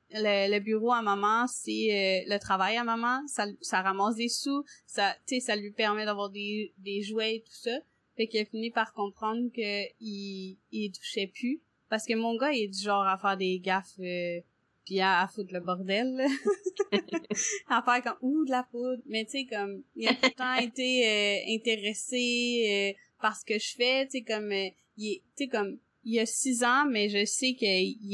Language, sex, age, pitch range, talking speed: French, female, 20-39, 195-245 Hz, 210 wpm